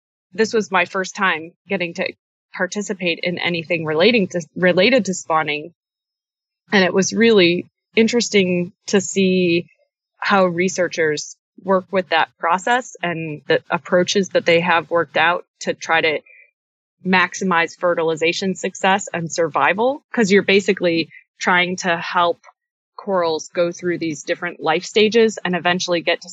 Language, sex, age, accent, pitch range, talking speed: English, female, 20-39, American, 165-195 Hz, 140 wpm